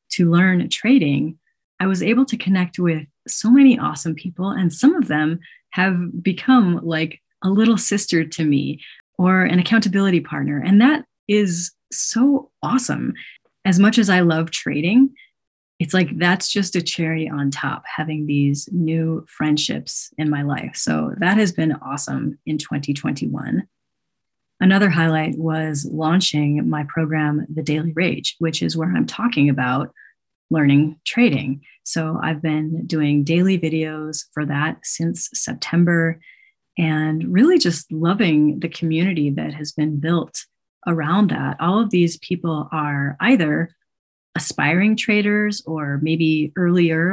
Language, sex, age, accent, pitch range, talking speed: English, female, 30-49, American, 155-190 Hz, 145 wpm